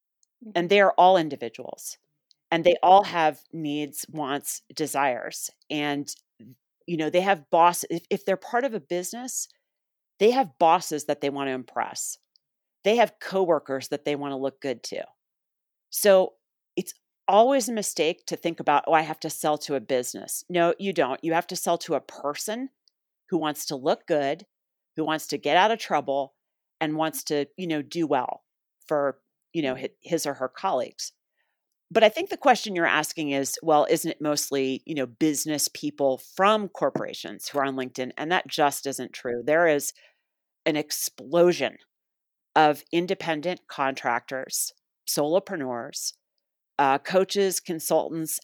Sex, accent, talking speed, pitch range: female, American, 165 wpm, 145-185 Hz